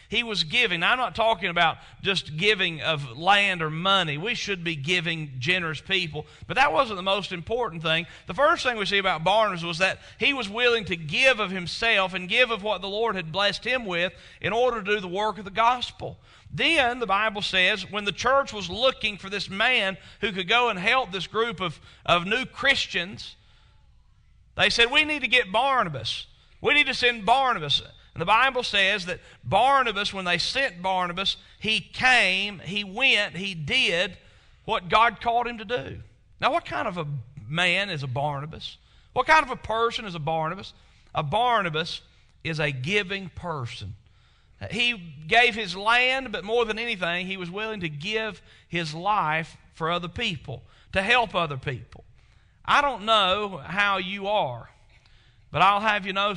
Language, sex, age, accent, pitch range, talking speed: English, male, 40-59, American, 155-220 Hz, 185 wpm